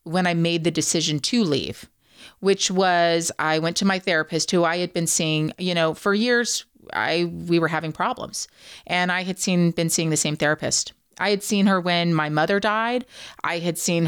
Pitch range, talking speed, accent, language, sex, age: 160-210 Hz, 205 wpm, American, English, female, 30-49